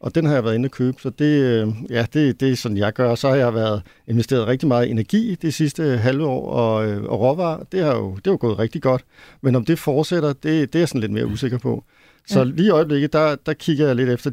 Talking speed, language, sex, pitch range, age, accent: 255 wpm, Danish, male, 115-140 Hz, 50-69, native